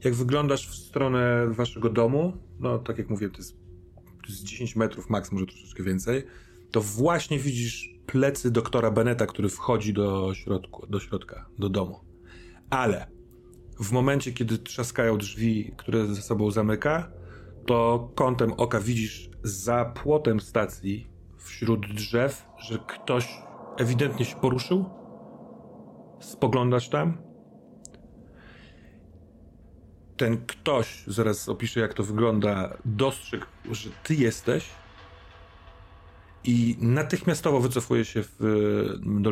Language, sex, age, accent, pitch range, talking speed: Polish, male, 30-49, native, 95-125 Hz, 120 wpm